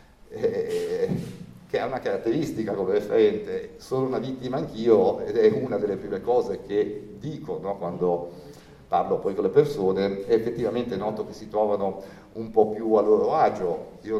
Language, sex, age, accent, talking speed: Italian, male, 50-69, native, 150 wpm